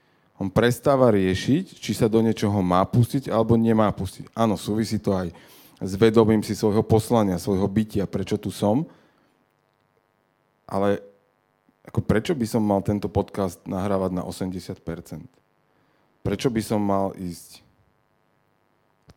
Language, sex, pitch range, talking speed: Slovak, male, 95-120 Hz, 135 wpm